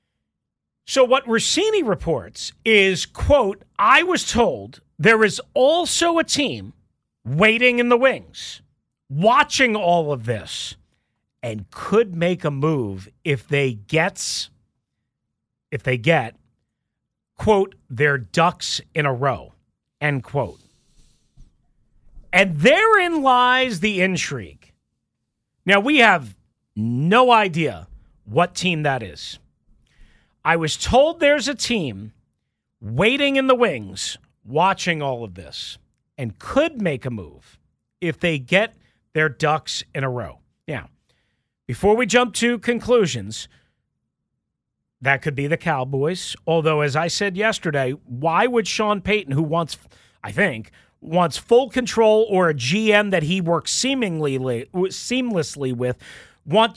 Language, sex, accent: English, male, American